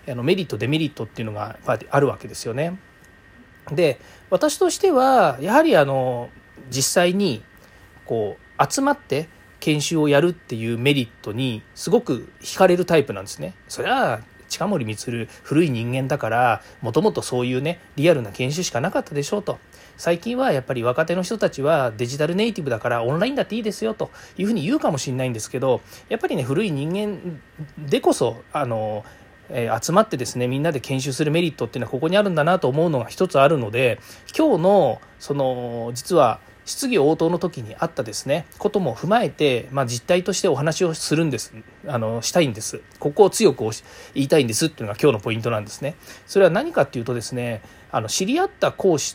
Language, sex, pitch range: Japanese, male, 125-190 Hz